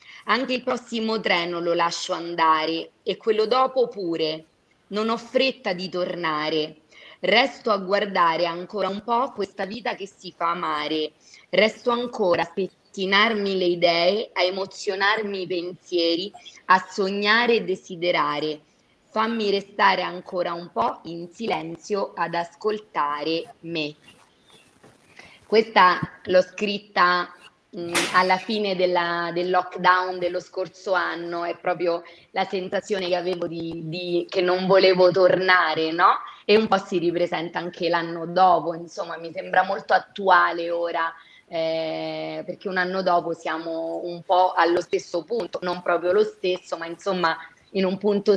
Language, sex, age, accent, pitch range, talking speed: Italian, female, 20-39, native, 170-195 Hz, 135 wpm